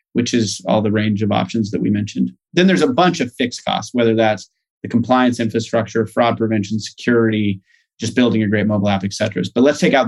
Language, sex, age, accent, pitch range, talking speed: English, male, 30-49, American, 105-140 Hz, 215 wpm